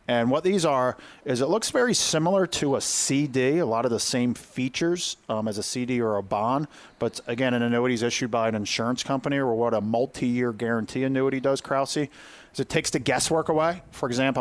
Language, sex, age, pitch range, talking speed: English, male, 40-59, 105-130 Hz, 210 wpm